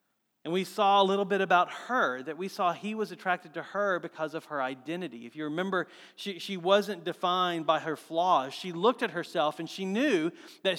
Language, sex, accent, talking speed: English, male, American, 210 wpm